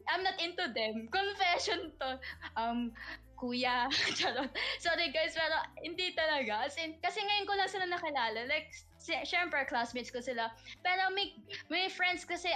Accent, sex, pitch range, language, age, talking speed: native, female, 245-325 Hz, Filipino, 20-39, 145 wpm